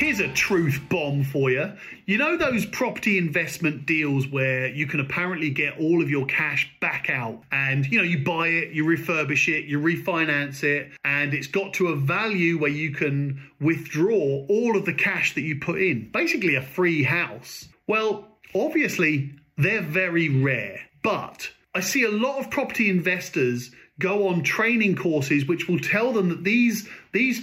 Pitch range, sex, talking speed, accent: 150-210 Hz, male, 175 wpm, British